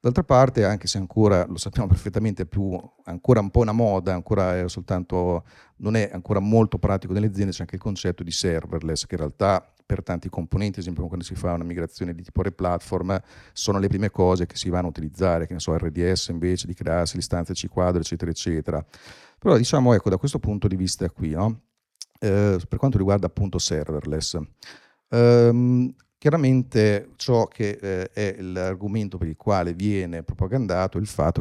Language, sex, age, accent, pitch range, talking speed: Italian, male, 50-69, native, 90-105 Hz, 185 wpm